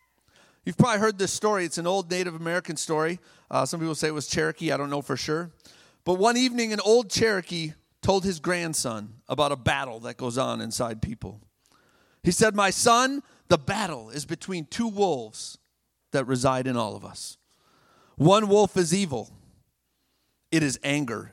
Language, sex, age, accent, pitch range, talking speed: English, male, 40-59, American, 115-165 Hz, 175 wpm